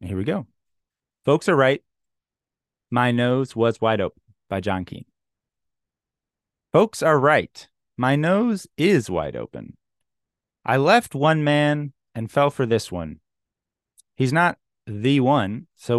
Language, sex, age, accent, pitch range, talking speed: English, male, 30-49, American, 110-140 Hz, 135 wpm